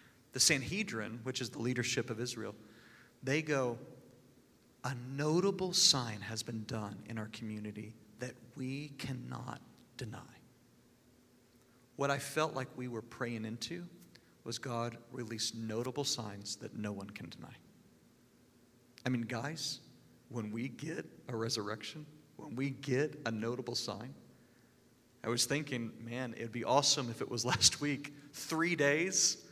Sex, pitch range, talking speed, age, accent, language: male, 120-145 Hz, 140 wpm, 40-59, American, English